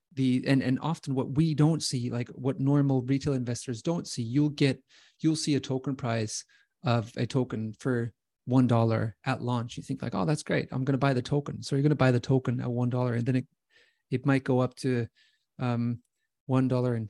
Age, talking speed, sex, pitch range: 30-49, 225 wpm, male, 120-145 Hz